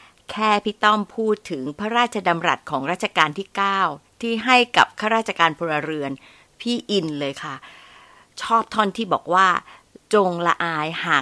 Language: Thai